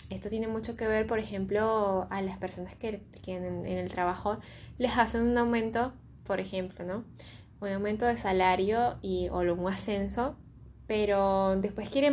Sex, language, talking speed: female, Spanish, 170 wpm